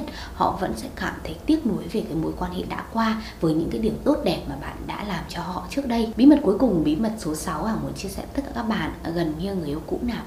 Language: Vietnamese